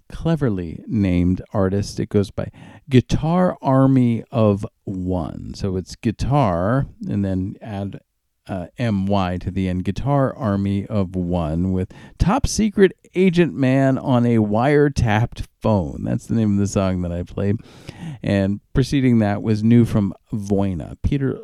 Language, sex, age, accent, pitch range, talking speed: English, male, 50-69, American, 95-130 Hz, 145 wpm